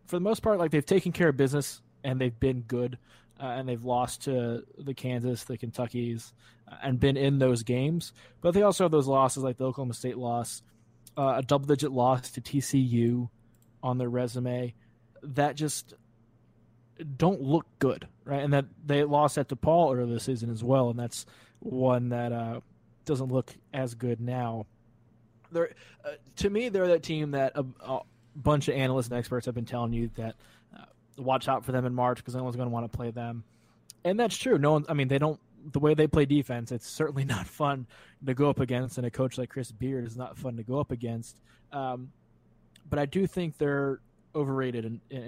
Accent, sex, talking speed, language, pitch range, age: American, male, 205 wpm, English, 120-140 Hz, 20-39